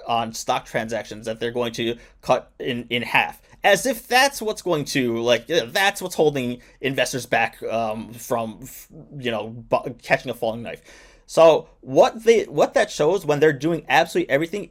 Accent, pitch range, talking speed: American, 125-185 Hz, 170 wpm